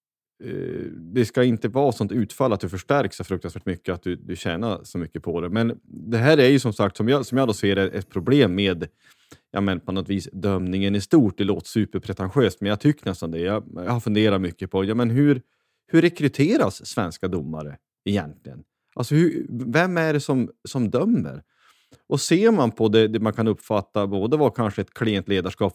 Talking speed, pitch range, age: 205 wpm, 95-120 Hz, 30-49